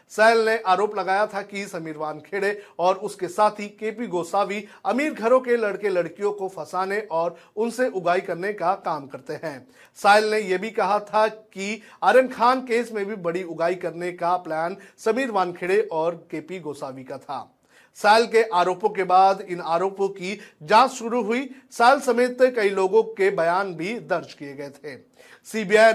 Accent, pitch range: native, 175-220 Hz